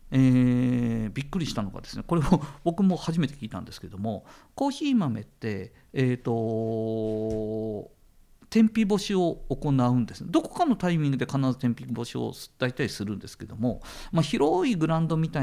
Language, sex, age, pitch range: Japanese, male, 50-69, 115-190 Hz